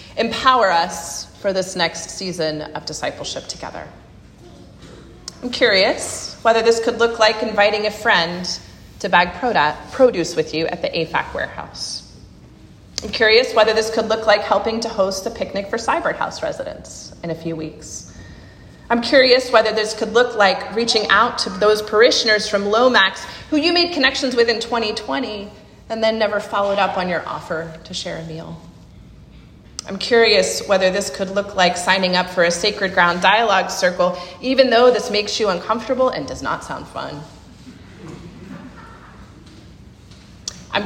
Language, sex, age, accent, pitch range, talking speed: English, female, 30-49, American, 175-225 Hz, 160 wpm